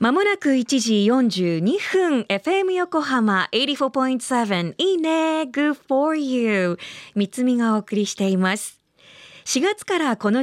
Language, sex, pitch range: Japanese, female, 200-315 Hz